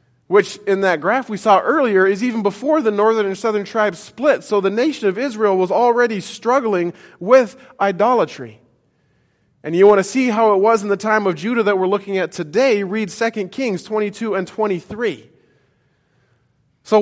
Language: English